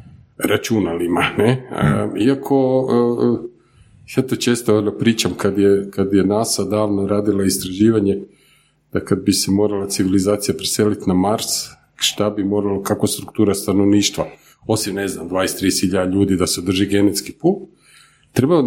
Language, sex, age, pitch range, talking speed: Croatian, male, 50-69, 100-135 Hz, 135 wpm